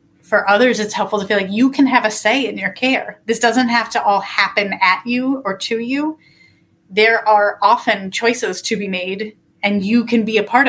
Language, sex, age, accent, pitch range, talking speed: English, female, 30-49, American, 195-230 Hz, 220 wpm